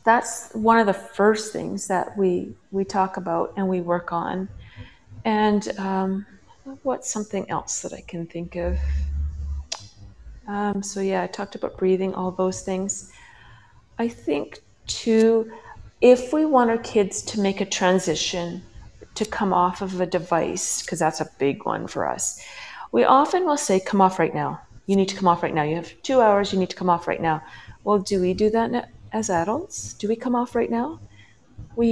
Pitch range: 175-230 Hz